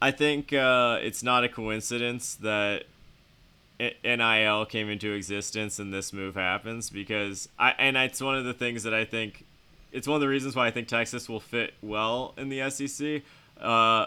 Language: English